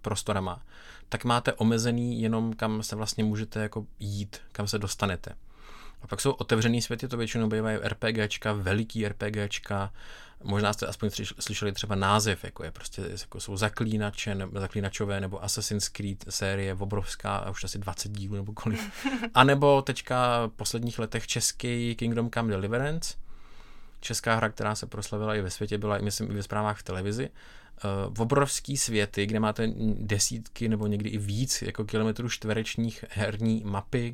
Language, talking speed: Czech, 160 wpm